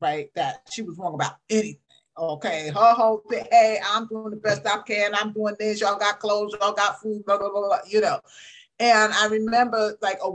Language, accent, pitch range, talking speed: English, American, 190-255 Hz, 220 wpm